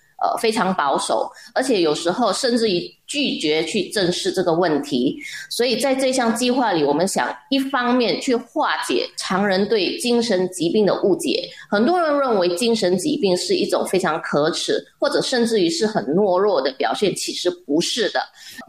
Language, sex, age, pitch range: Chinese, female, 20-39, 180-260 Hz